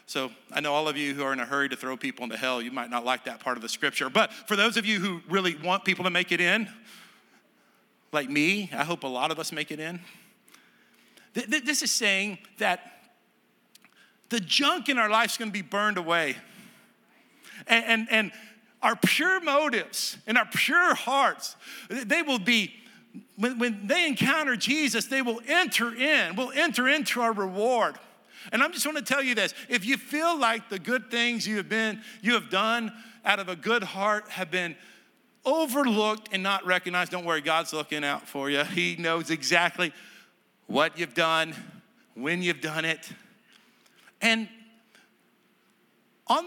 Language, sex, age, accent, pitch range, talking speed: English, male, 50-69, American, 170-235 Hz, 180 wpm